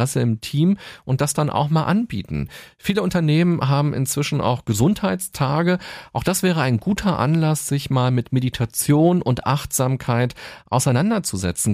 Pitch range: 115-150 Hz